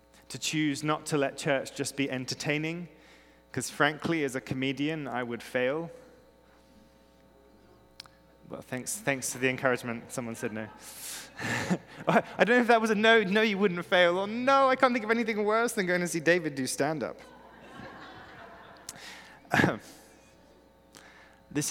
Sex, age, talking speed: male, 20-39, 150 wpm